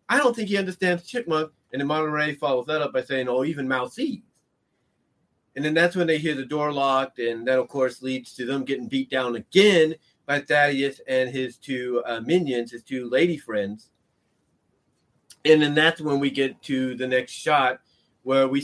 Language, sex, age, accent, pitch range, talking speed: English, male, 30-49, American, 130-190 Hz, 195 wpm